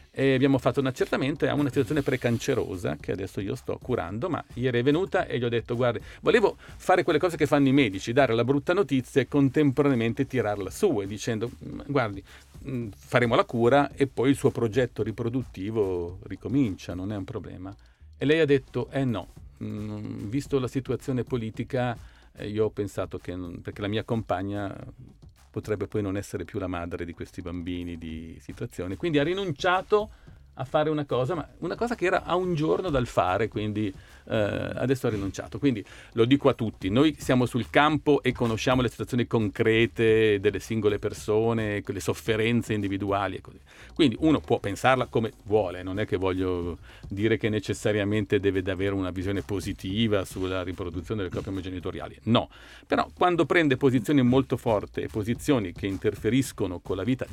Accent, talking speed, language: native, 175 wpm, Italian